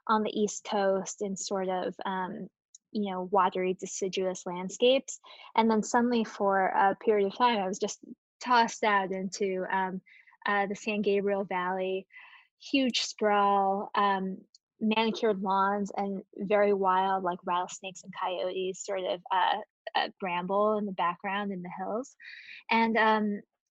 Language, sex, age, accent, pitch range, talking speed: English, female, 10-29, American, 195-225 Hz, 145 wpm